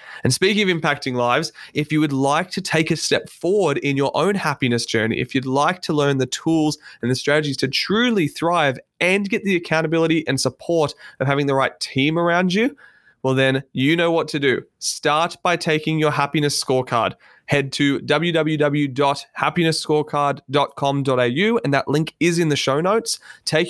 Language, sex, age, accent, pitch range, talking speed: English, male, 20-39, Australian, 125-155 Hz, 175 wpm